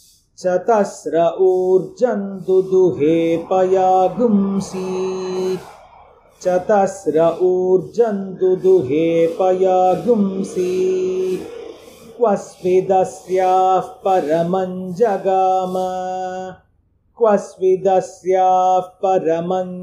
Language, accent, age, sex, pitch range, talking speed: Hindi, native, 40-59, male, 165-185 Hz, 35 wpm